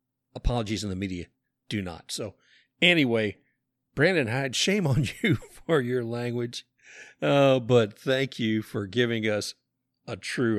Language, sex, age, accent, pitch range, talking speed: English, male, 60-79, American, 115-170 Hz, 140 wpm